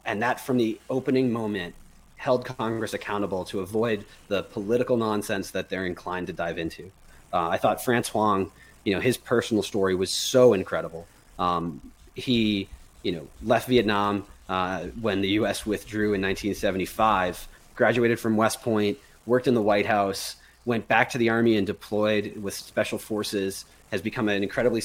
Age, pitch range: 30-49, 95-115 Hz